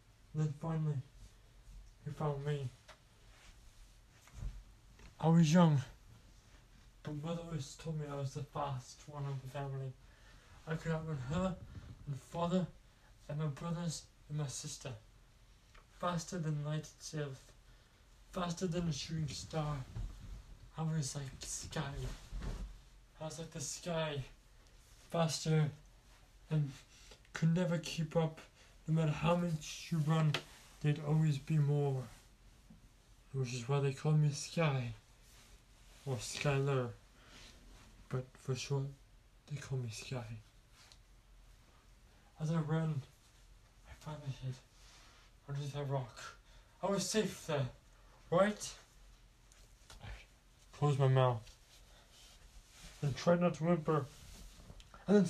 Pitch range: 115-155 Hz